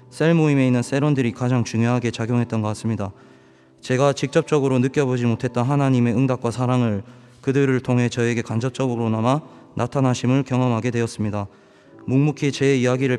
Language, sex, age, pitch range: Korean, male, 20-39, 120-140 Hz